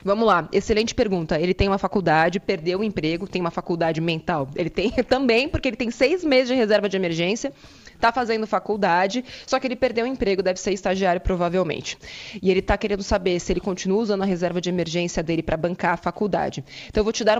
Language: Portuguese